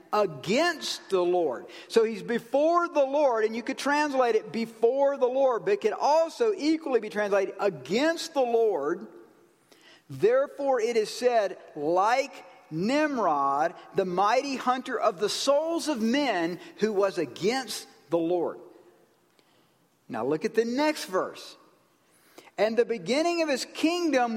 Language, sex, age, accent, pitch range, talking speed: English, male, 50-69, American, 200-300 Hz, 140 wpm